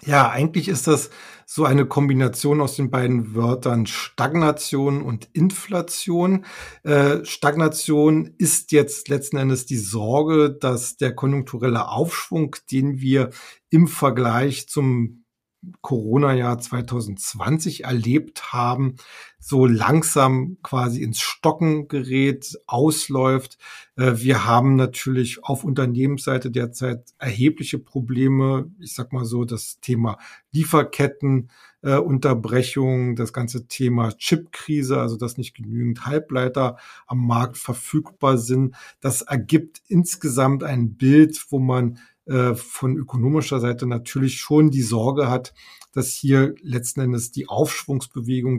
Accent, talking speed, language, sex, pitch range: German, 115 wpm, German, male, 120-145 Hz